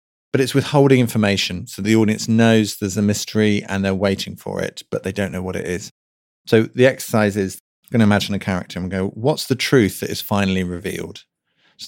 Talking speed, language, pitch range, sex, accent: 225 wpm, English, 95-115 Hz, male, British